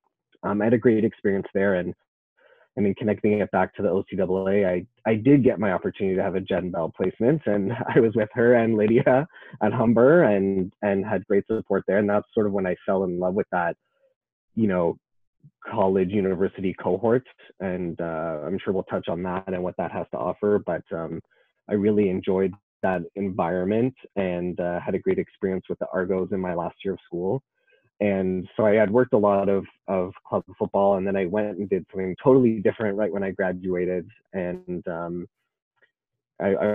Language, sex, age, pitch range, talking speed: English, male, 20-39, 90-105 Hz, 200 wpm